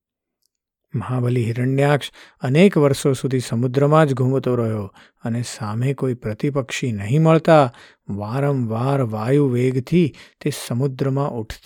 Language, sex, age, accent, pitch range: Gujarati, male, 50-69, native, 115-145 Hz